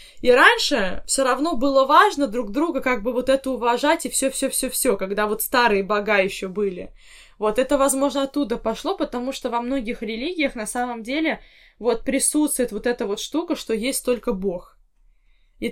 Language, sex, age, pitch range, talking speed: Russian, female, 20-39, 215-270 Hz, 185 wpm